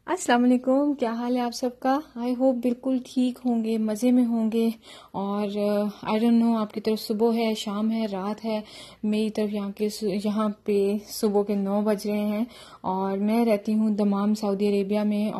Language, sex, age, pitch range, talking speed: Urdu, female, 30-49, 200-230 Hz, 195 wpm